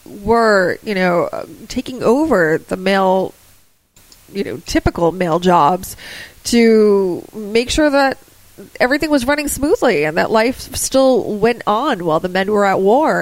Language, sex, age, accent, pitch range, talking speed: English, female, 20-39, American, 190-230 Hz, 145 wpm